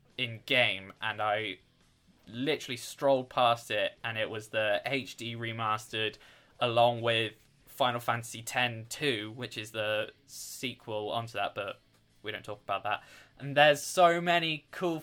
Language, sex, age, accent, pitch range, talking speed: English, male, 20-39, British, 115-140 Hz, 150 wpm